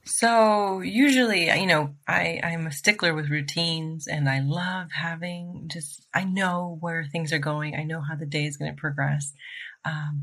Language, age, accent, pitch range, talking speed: English, 30-49, American, 150-175 Hz, 180 wpm